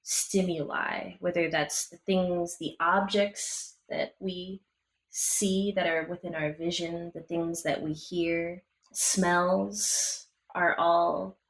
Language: English